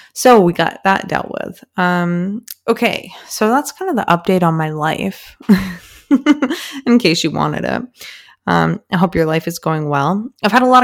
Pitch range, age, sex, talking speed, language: 155-185 Hz, 20-39, female, 190 wpm, English